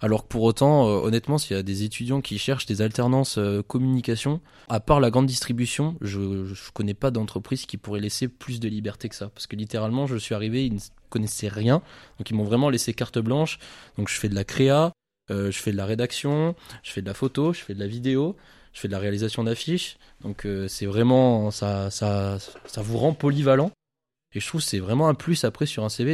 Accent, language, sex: French, French, male